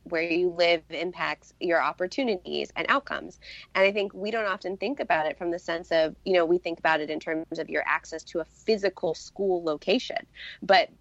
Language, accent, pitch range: English, American, 160-185 Hz